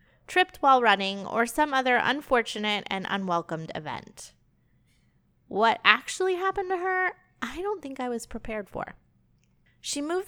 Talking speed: 140 wpm